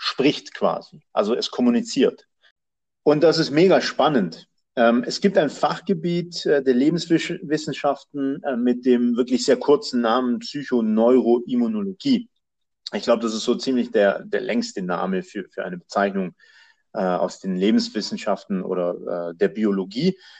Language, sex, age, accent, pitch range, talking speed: German, male, 40-59, German, 125-195 Hz, 125 wpm